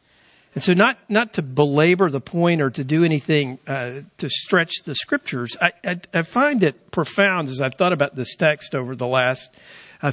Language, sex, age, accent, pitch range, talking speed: English, male, 60-79, American, 145-190 Hz, 195 wpm